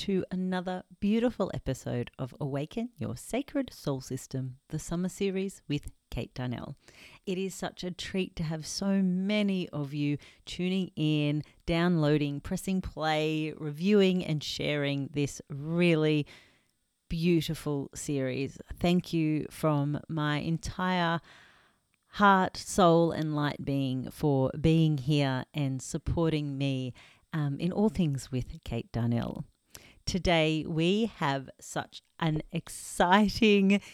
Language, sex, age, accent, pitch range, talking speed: English, female, 40-59, Australian, 140-180 Hz, 120 wpm